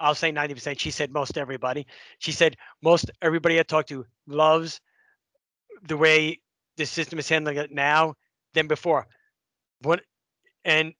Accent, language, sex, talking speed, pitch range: American, English, male, 145 wpm, 150-175 Hz